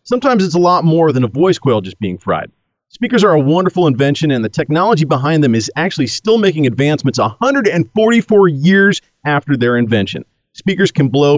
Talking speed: 185 wpm